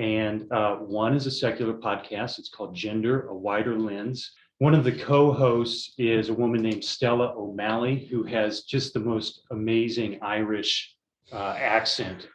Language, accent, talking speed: English, American, 155 wpm